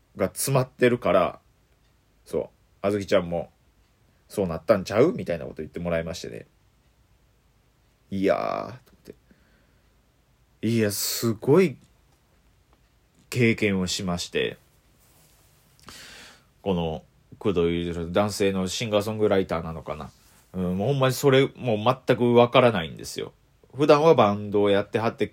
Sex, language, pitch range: male, Japanese, 95-135 Hz